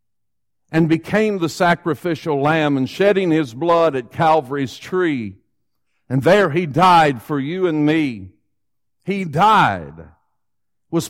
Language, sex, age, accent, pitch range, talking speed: English, male, 50-69, American, 160-235 Hz, 125 wpm